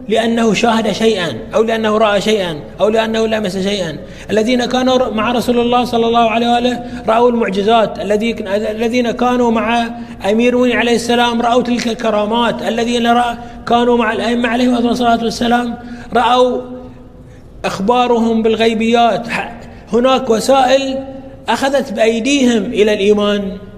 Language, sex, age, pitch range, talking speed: Arabic, male, 30-49, 180-235 Hz, 120 wpm